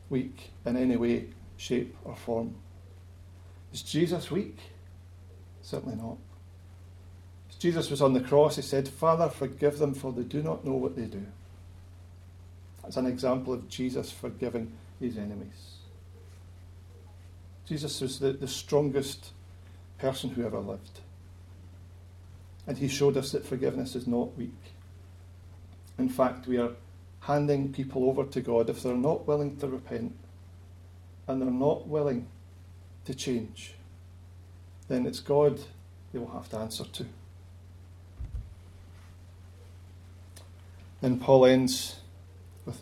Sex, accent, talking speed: male, British, 125 wpm